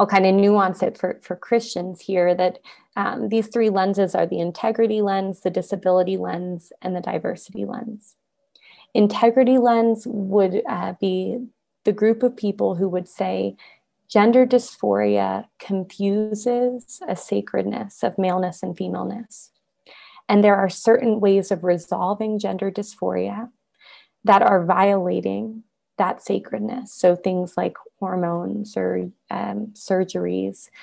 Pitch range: 185-220 Hz